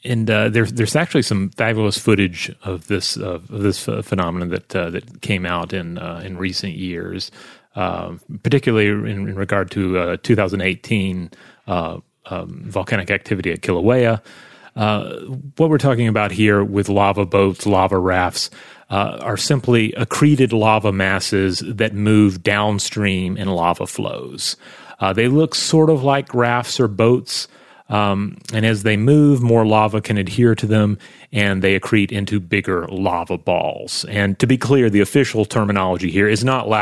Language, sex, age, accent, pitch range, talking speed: English, male, 30-49, American, 95-115 Hz, 160 wpm